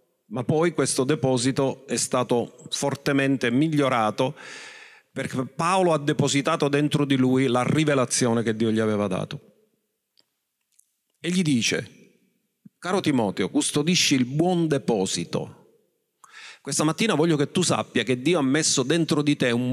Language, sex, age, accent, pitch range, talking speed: Italian, male, 40-59, native, 135-185 Hz, 135 wpm